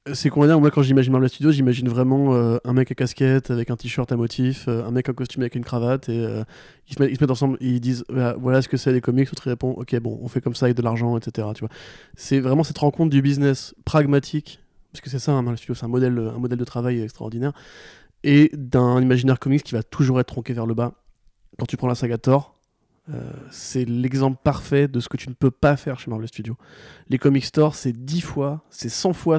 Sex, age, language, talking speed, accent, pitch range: male, 20-39, French, 255 wpm, French, 120-140 Hz